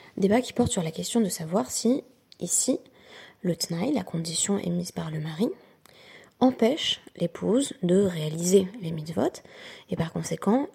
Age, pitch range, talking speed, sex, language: 20-39, 175-240 Hz, 155 wpm, female, French